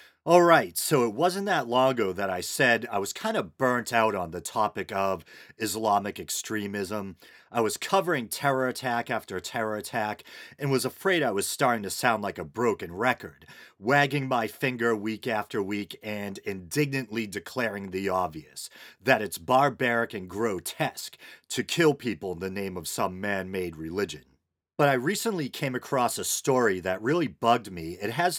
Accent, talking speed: American, 170 wpm